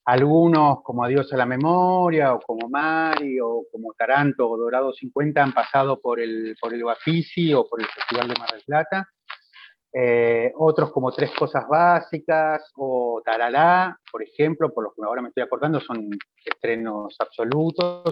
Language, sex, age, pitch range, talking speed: Spanish, male, 30-49, 130-175 Hz, 165 wpm